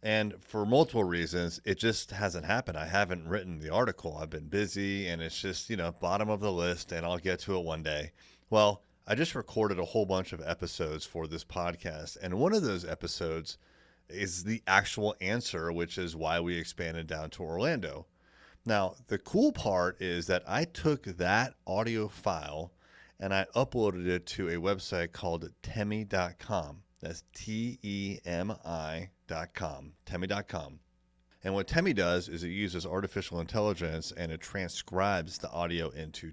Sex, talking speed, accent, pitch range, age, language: male, 165 wpm, American, 85-105 Hz, 30-49, English